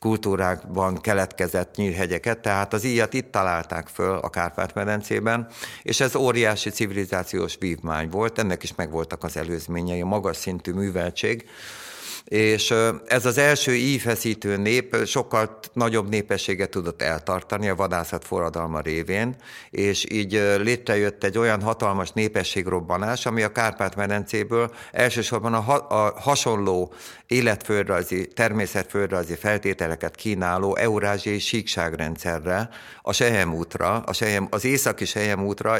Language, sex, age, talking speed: Hungarian, male, 50-69, 115 wpm